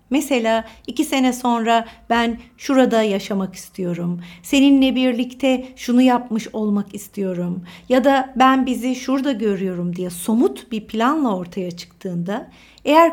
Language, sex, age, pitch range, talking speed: Turkish, female, 60-79, 200-265 Hz, 125 wpm